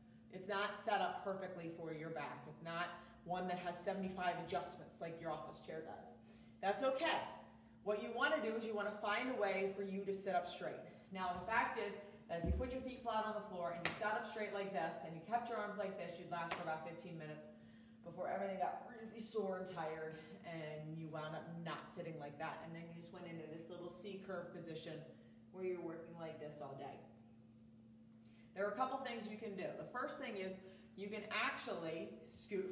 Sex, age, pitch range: female, 30-49, 165-210 Hz